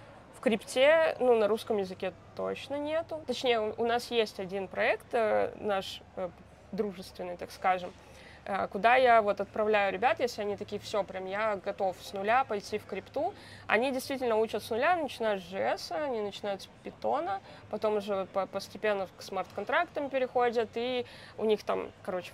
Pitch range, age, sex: 200-240 Hz, 20-39, female